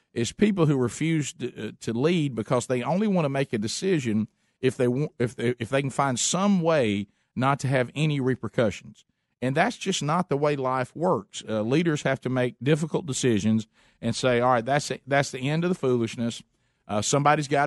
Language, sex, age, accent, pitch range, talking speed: English, male, 50-69, American, 120-150 Hz, 210 wpm